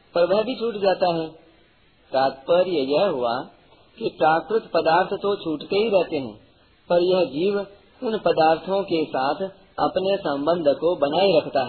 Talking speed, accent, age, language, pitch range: 150 wpm, native, 40-59, Hindi, 145-185 Hz